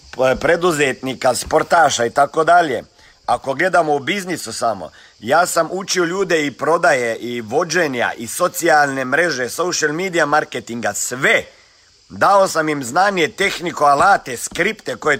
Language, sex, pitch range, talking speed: Croatian, male, 140-200 Hz, 130 wpm